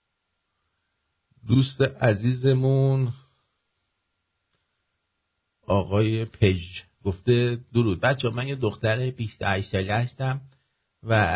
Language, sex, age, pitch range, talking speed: English, male, 50-69, 105-135 Hz, 70 wpm